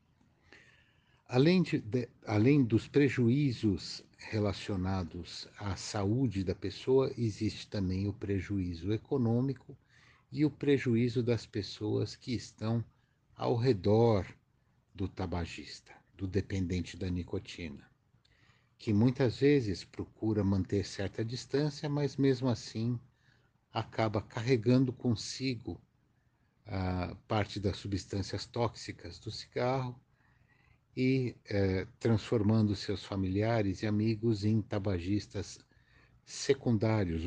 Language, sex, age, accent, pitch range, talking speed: Portuguese, male, 60-79, Brazilian, 100-125 Hz, 90 wpm